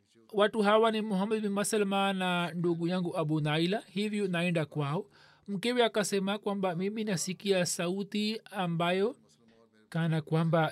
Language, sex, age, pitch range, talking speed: Swahili, male, 40-59, 160-195 Hz, 125 wpm